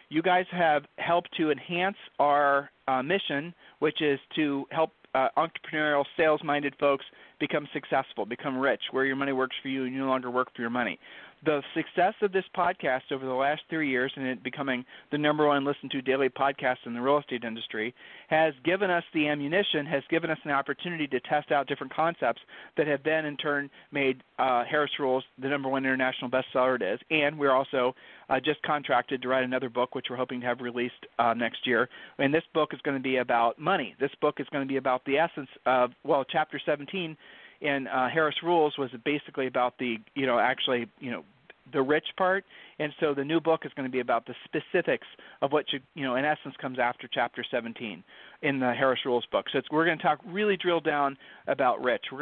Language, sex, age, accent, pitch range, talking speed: English, male, 40-59, American, 130-155 Hz, 215 wpm